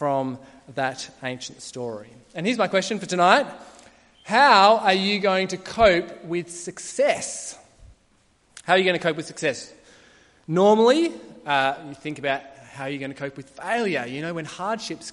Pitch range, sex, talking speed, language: 130-195 Hz, male, 165 wpm, English